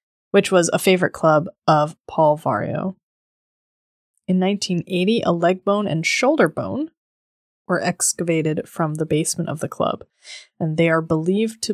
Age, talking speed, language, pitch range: 20-39, 150 wpm, English, 160-205 Hz